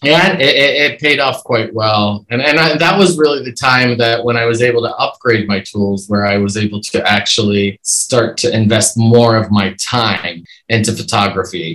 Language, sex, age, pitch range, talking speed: English, male, 30-49, 100-120 Hz, 200 wpm